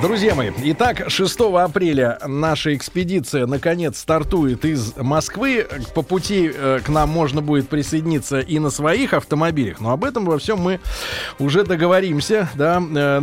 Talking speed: 150 wpm